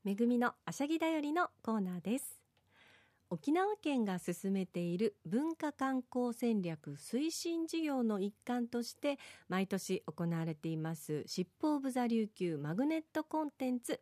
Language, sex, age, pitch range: Japanese, female, 40-59, 195-310 Hz